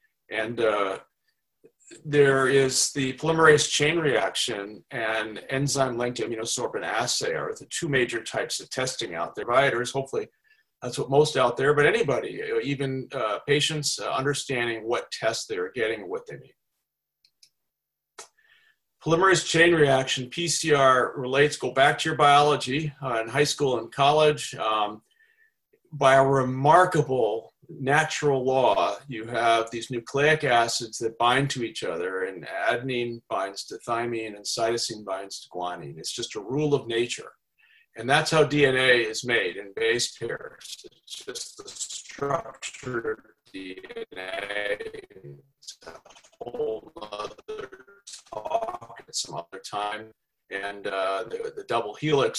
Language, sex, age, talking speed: English, male, 40-59, 135 wpm